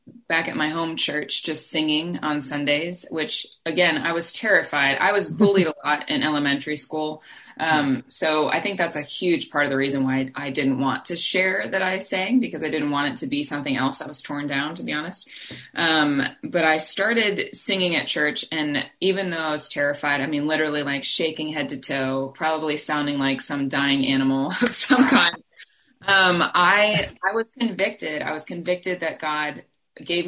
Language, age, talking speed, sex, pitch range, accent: English, 20-39, 195 wpm, female, 140-170 Hz, American